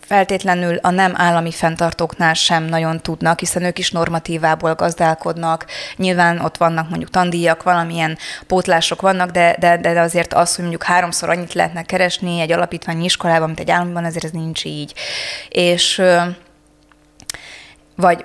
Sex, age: female, 20-39